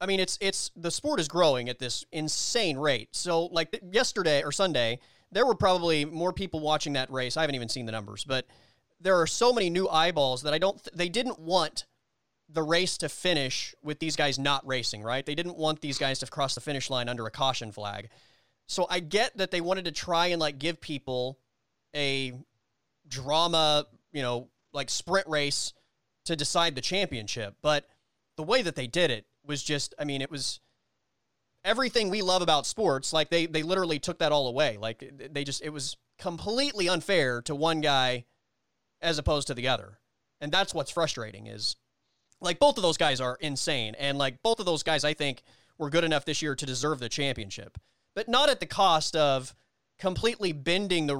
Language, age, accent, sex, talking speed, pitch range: English, 30-49, American, male, 200 wpm, 130-170 Hz